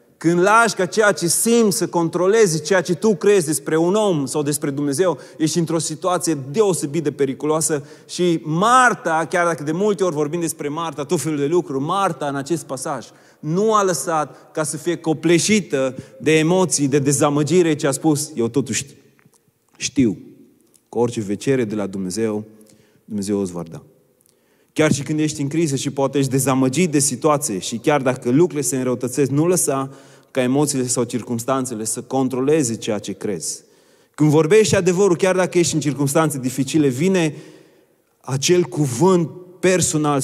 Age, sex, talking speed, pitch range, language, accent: 30-49, male, 165 wpm, 130-170 Hz, Romanian, native